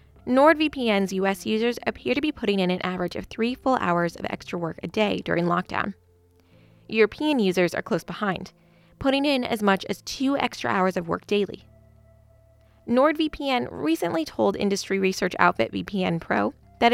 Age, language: 20-39, English